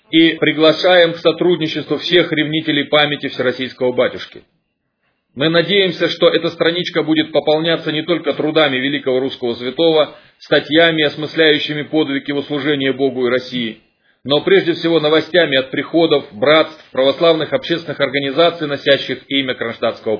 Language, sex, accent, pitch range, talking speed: Russian, male, native, 140-165 Hz, 130 wpm